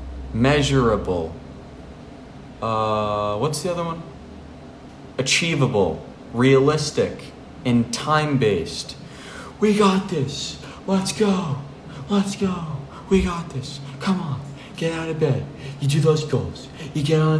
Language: English